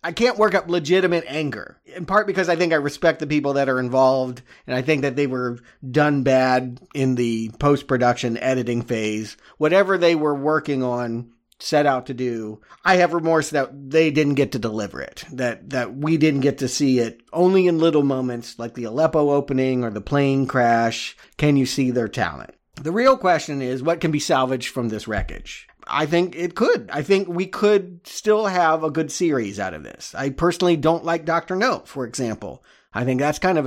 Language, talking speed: English, 205 wpm